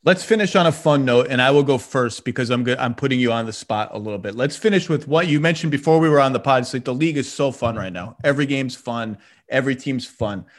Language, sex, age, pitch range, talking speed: English, male, 30-49, 120-150 Hz, 285 wpm